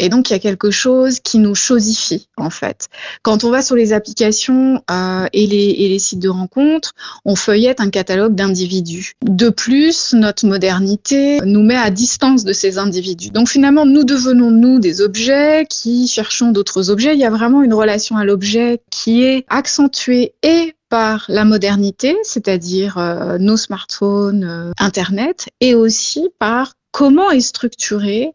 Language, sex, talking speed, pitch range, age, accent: French, female, 170 wpm, 205-260 Hz, 20-39, French